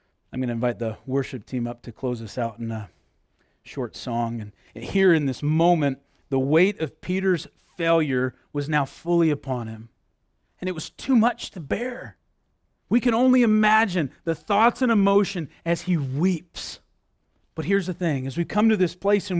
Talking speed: 185 wpm